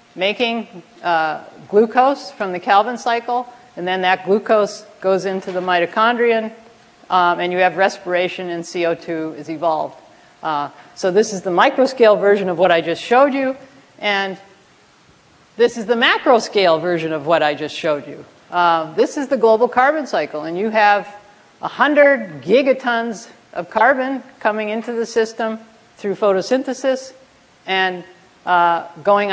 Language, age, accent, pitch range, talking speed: English, 50-69, American, 175-230 Hz, 145 wpm